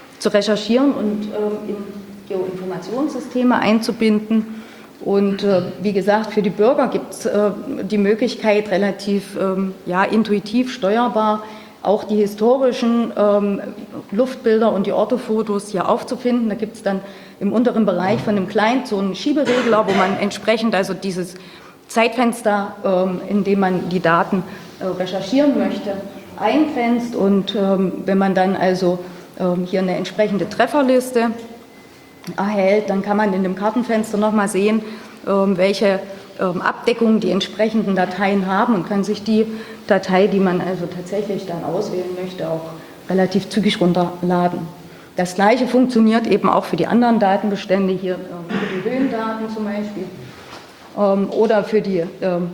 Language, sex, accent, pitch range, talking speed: German, female, German, 190-220 Hz, 140 wpm